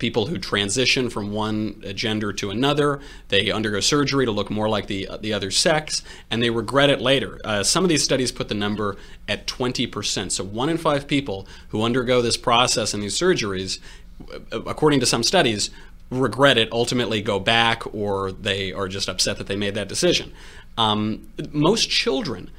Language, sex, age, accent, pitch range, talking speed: English, male, 30-49, American, 100-135 Hz, 180 wpm